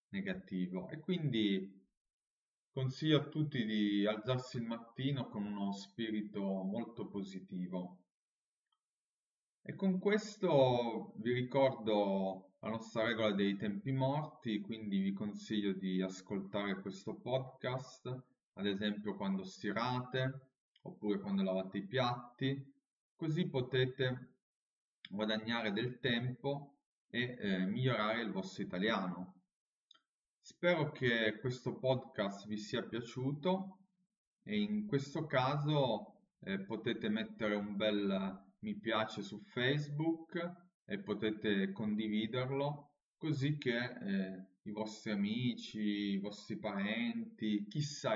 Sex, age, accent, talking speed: male, 30-49, native, 105 wpm